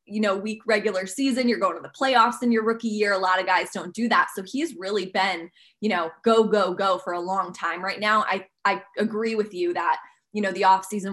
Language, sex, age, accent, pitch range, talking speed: English, female, 20-39, American, 190-230 Hz, 255 wpm